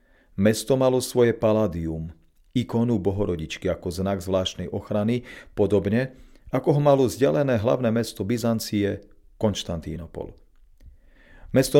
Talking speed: 100 wpm